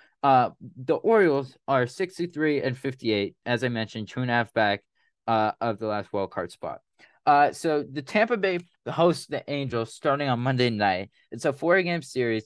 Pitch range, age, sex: 110-145 Hz, 20-39, male